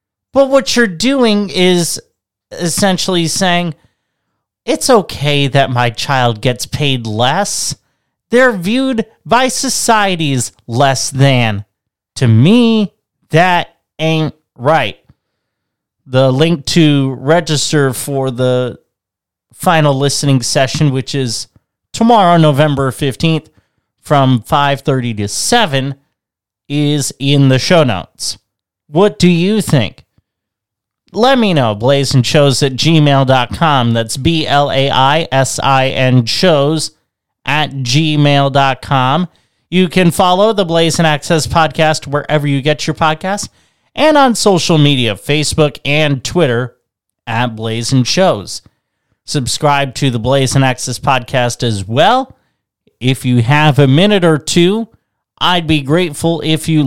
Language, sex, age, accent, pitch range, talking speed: English, male, 30-49, American, 125-165 Hz, 115 wpm